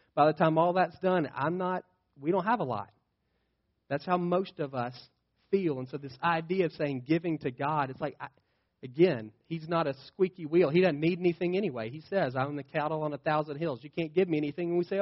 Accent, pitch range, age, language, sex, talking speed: American, 120-165 Hz, 40-59, English, male, 230 wpm